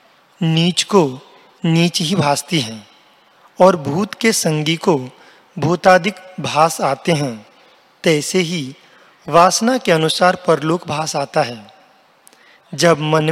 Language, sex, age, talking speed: Hindi, male, 40-59, 115 wpm